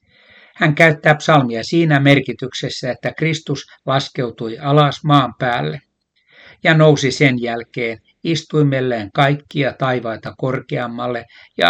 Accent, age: native, 60-79